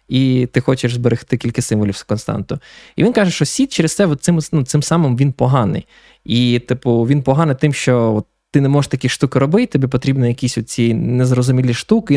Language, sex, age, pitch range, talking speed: Ukrainian, male, 20-39, 120-150 Hz, 195 wpm